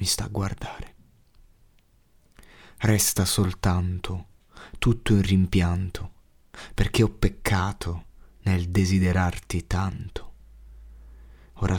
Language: Italian